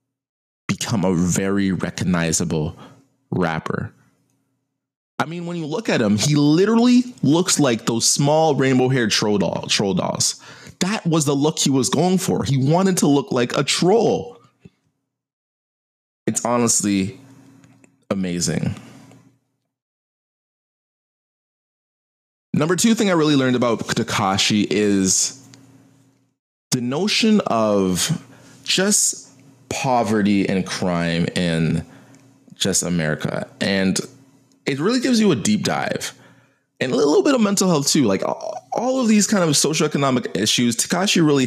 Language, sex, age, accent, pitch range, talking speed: English, male, 20-39, American, 110-160 Hz, 120 wpm